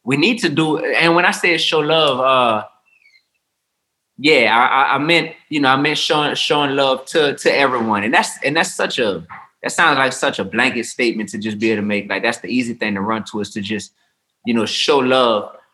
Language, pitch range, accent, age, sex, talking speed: English, 110-145 Hz, American, 20-39, male, 225 wpm